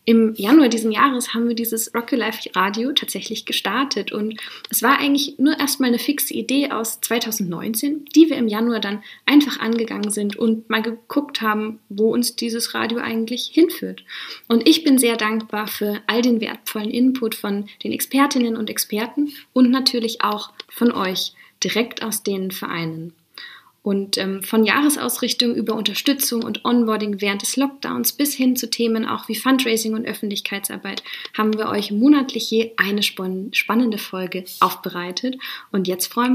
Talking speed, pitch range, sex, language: 160 wpm, 210-255 Hz, female, German